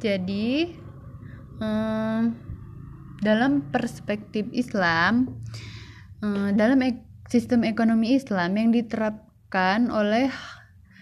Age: 10-29